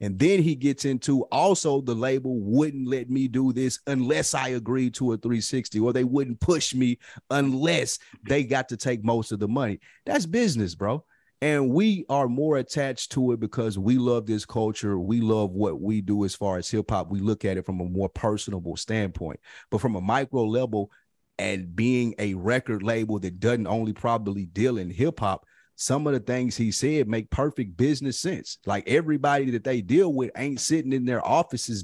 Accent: American